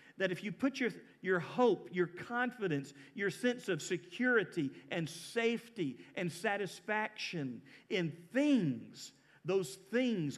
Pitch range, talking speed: 160-225 Hz, 120 wpm